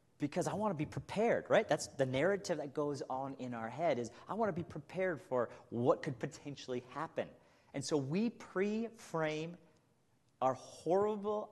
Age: 40-59